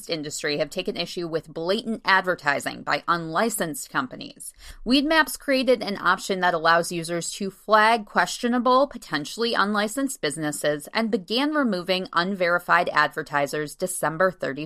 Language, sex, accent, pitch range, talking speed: English, female, American, 170-235 Hz, 120 wpm